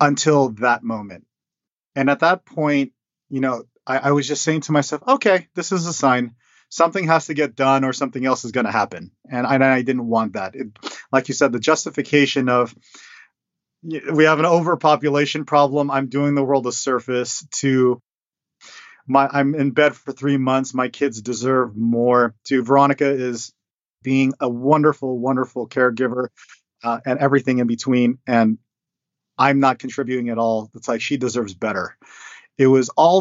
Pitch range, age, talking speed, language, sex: 120-140 Hz, 30-49, 170 wpm, English, male